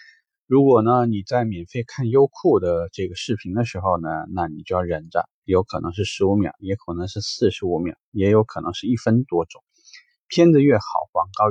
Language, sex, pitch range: Chinese, male, 95-125 Hz